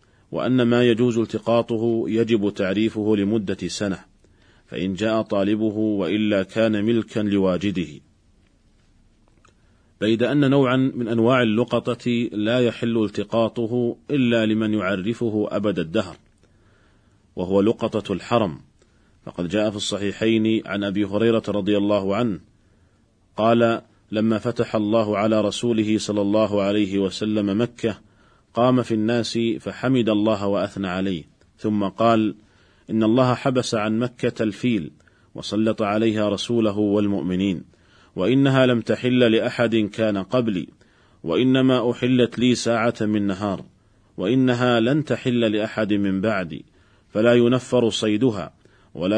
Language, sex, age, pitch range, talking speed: Arabic, male, 40-59, 100-120 Hz, 115 wpm